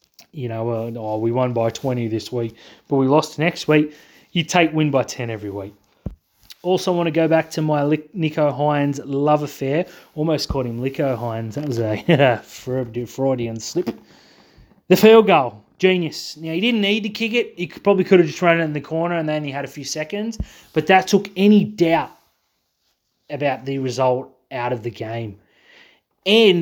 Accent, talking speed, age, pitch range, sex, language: Australian, 190 wpm, 30-49, 130-180 Hz, male, English